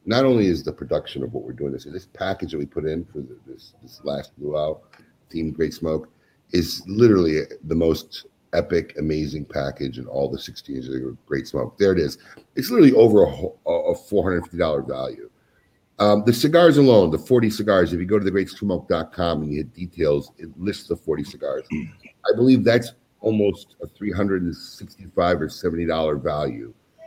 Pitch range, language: 80-105 Hz, English